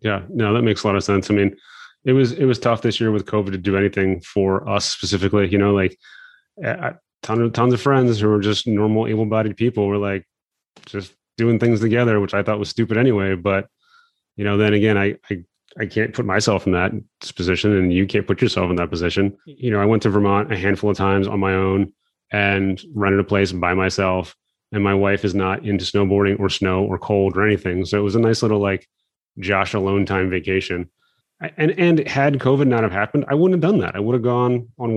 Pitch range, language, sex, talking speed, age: 100-115 Hz, English, male, 230 wpm, 30-49